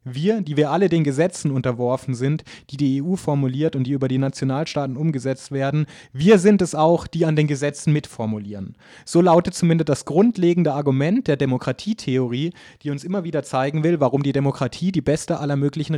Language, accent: German, German